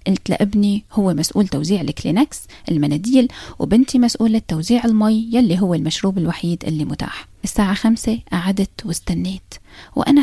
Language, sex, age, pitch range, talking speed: Arabic, female, 20-39, 185-245 Hz, 130 wpm